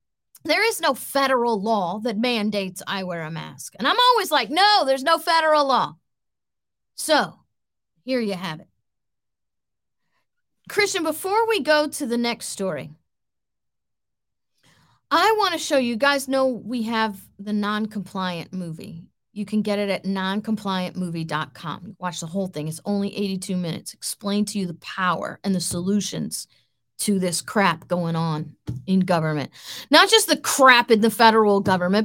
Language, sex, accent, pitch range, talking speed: English, female, American, 195-295 Hz, 155 wpm